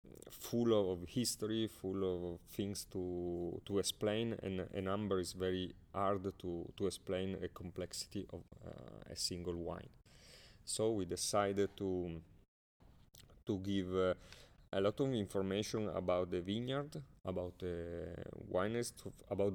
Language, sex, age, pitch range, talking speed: English, male, 30-49, 90-105 Hz, 140 wpm